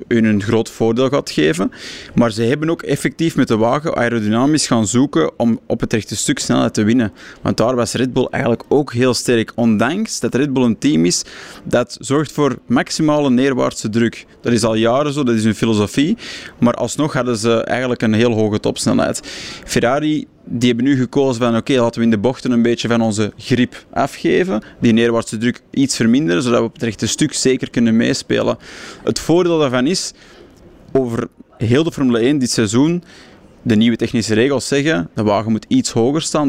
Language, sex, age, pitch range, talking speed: Dutch, male, 20-39, 115-140 Hz, 195 wpm